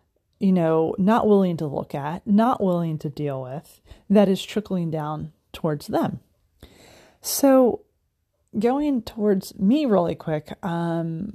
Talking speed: 130 wpm